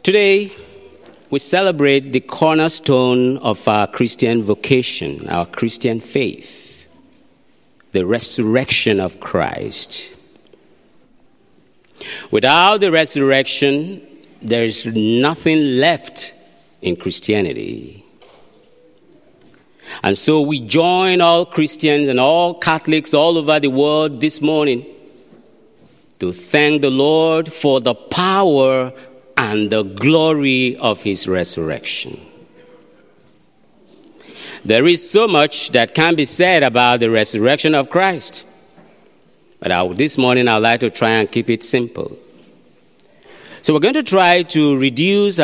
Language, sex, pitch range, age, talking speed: English, male, 120-165 Hz, 50-69, 110 wpm